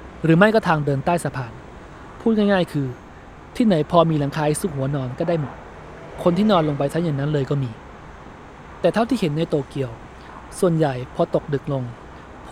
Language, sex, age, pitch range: Thai, male, 20-39, 135-175 Hz